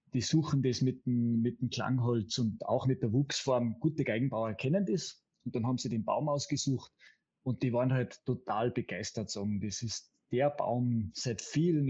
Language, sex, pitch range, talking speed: German, male, 120-150 Hz, 185 wpm